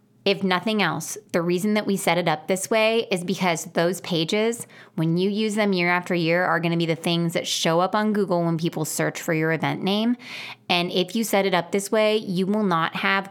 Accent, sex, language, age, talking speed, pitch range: American, female, English, 20-39, 235 wpm, 170-215 Hz